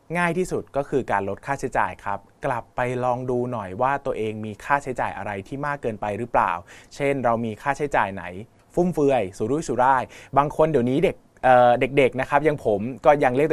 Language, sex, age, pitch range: Thai, male, 20-39, 115-150 Hz